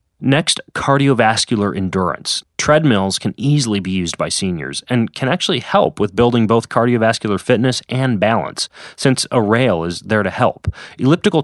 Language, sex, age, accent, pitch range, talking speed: English, male, 30-49, American, 100-130 Hz, 150 wpm